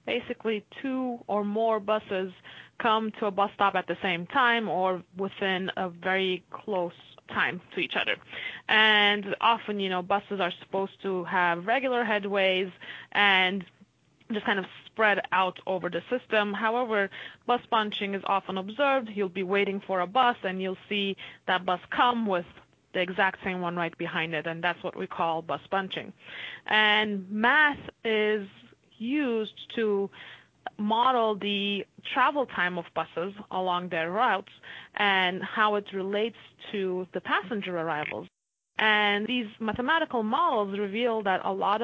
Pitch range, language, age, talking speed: 185-225 Hz, English, 20-39, 150 wpm